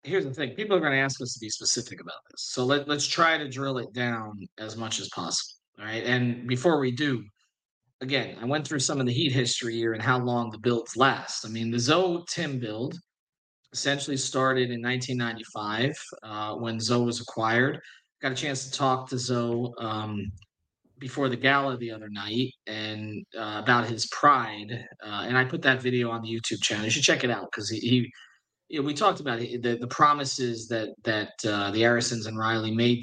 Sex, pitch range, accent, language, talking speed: male, 115-135 Hz, American, English, 205 wpm